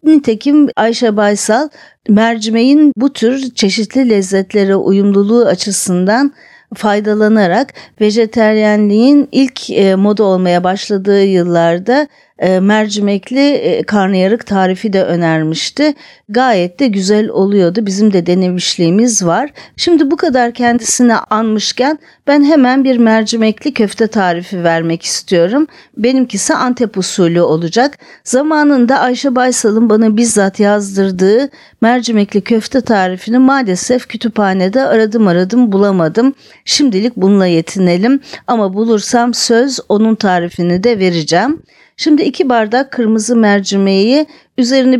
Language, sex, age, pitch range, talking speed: Turkish, female, 50-69, 195-255 Hz, 105 wpm